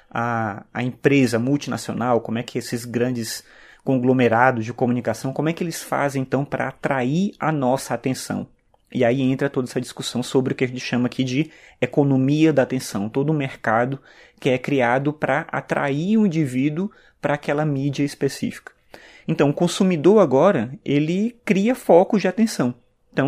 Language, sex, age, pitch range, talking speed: Portuguese, male, 20-39, 120-150 Hz, 170 wpm